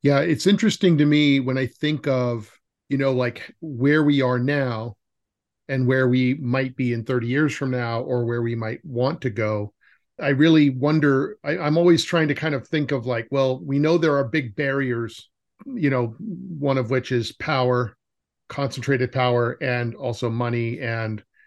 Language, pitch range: English, 120-150 Hz